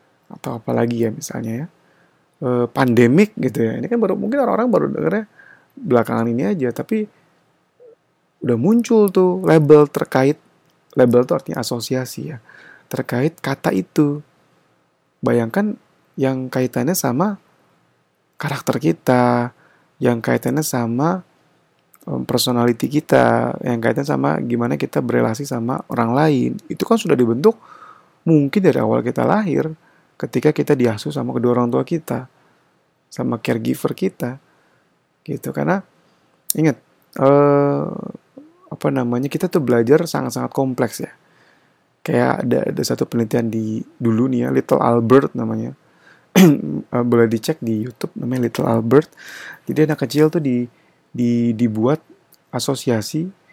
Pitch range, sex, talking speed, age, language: 120-165 Hz, male, 125 wpm, 30-49, Indonesian